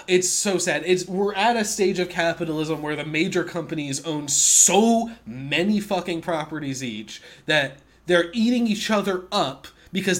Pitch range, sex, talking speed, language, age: 145-180 Hz, male, 160 wpm, English, 20-39